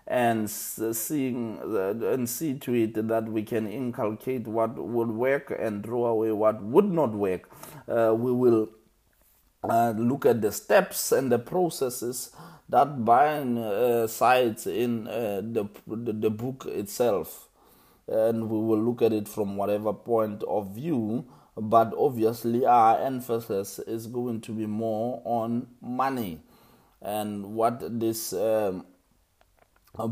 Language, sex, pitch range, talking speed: English, male, 110-125 Hz, 140 wpm